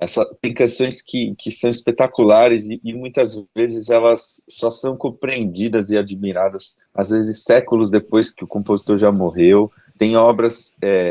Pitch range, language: 95-120 Hz, Portuguese